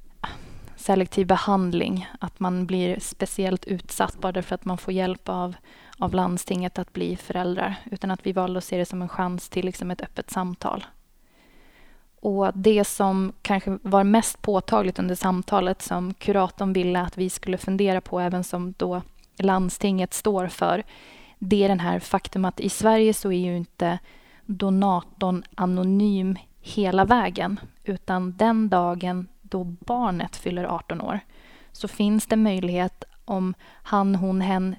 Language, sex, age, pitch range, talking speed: Swedish, female, 20-39, 180-200 Hz, 150 wpm